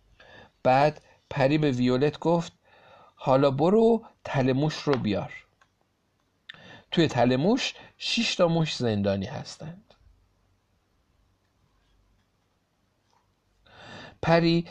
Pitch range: 110-150 Hz